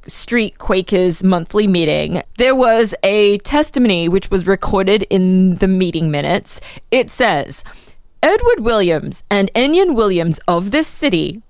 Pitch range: 195-290 Hz